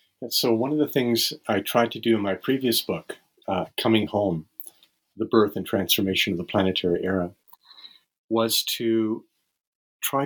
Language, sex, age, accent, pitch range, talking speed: English, male, 40-59, American, 95-115 Hz, 160 wpm